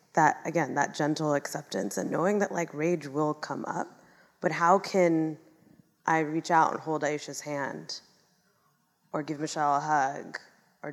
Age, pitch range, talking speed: 20-39, 150-195 Hz, 160 wpm